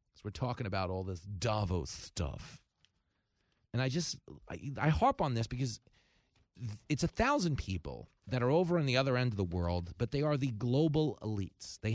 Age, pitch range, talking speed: 30-49, 100-145 Hz, 180 wpm